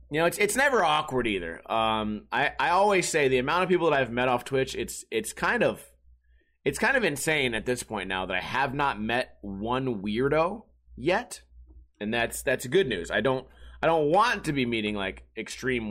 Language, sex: English, male